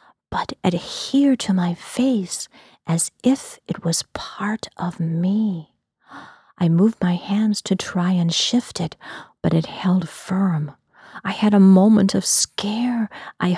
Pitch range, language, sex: 170-215 Hz, English, female